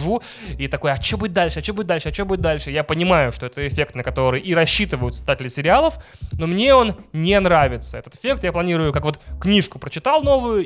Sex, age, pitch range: male, 20-39, 135-190 Hz